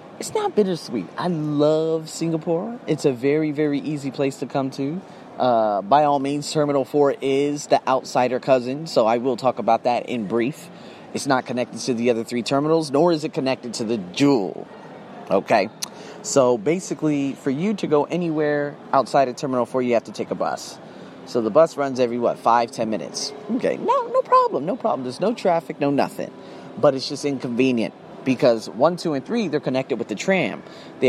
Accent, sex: American, male